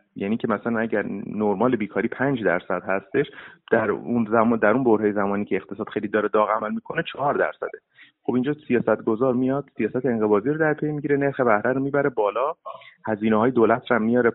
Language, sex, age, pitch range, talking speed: Persian, male, 30-49, 105-130 Hz, 185 wpm